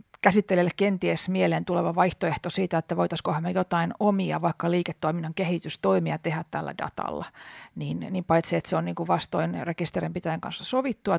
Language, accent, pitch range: Finnish, native, 170-205 Hz